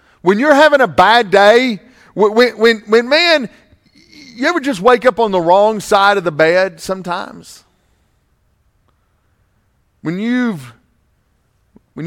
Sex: male